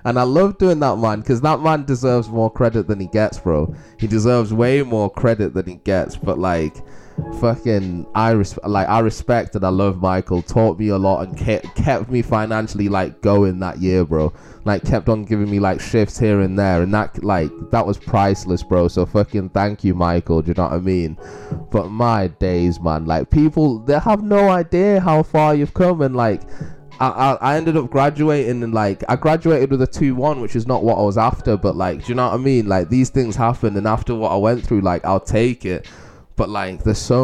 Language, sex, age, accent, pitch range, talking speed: English, male, 20-39, British, 95-130 Hz, 220 wpm